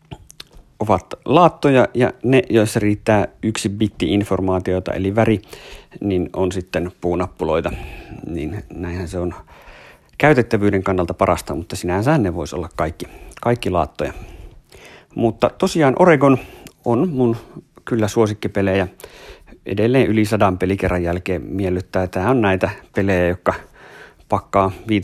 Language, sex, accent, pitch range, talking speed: Finnish, male, native, 95-130 Hz, 115 wpm